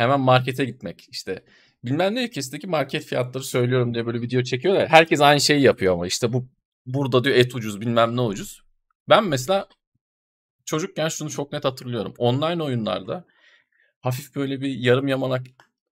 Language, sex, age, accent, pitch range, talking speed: Turkish, male, 40-59, native, 120-155 Hz, 160 wpm